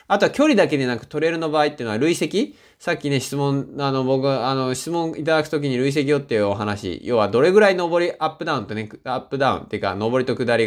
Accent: native